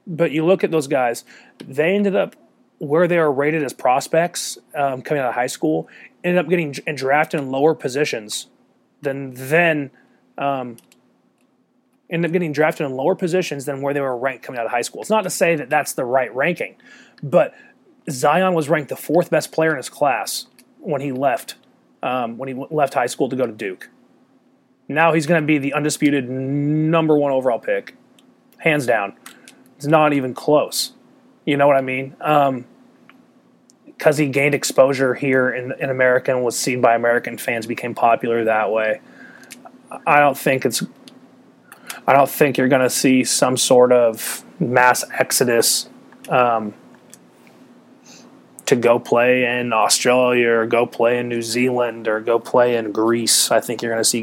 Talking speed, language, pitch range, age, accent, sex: 175 wpm, English, 120-160 Hz, 30-49, American, male